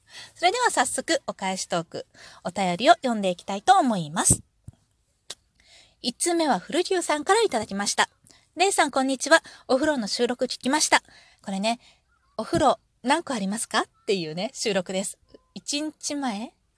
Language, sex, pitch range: Japanese, female, 210-325 Hz